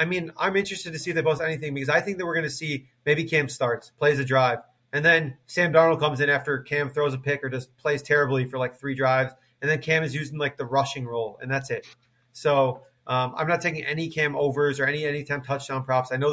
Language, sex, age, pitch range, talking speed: English, male, 30-49, 130-150 Hz, 255 wpm